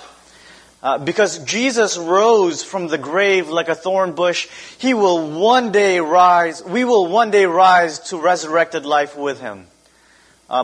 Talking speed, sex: 150 wpm, male